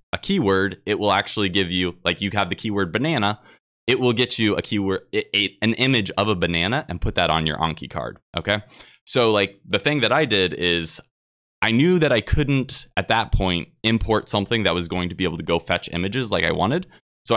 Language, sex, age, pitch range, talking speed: English, male, 20-39, 90-120 Hz, 230 wpm